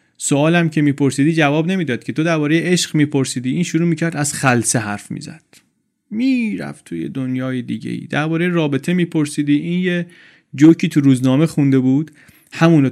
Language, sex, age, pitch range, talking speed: Persian, male, 30-49, 130-170 Hz, 155 wpm